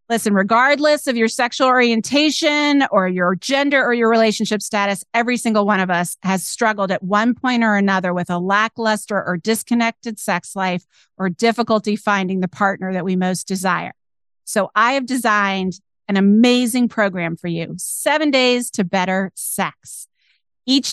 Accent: American